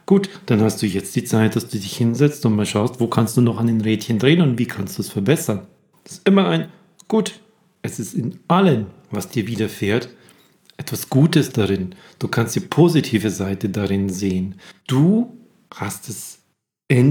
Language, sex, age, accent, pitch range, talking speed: German, male, 40-59, German, 105-160 Hz, 190 wpm